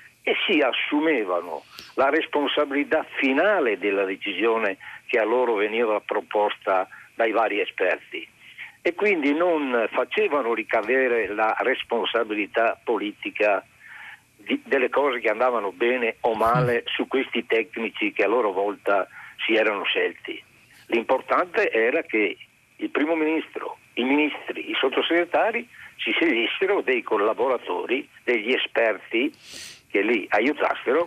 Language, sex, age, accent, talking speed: Italian, male, 60-79, native, 115 wpm